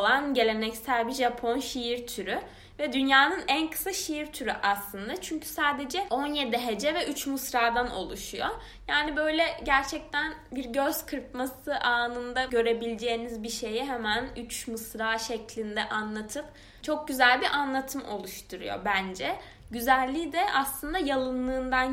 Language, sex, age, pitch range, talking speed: Turkish, female, 10-29, 215-265 Hz, 125 wpm